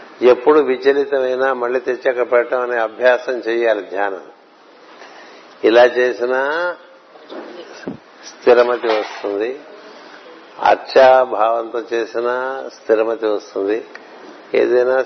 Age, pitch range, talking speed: 60-79, 110-130 Hz, 70 wpm